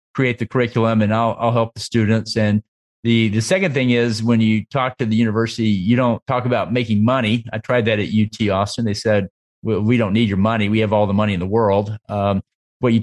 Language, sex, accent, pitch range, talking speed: English, male, American, 105-120 Hz, 240 wpm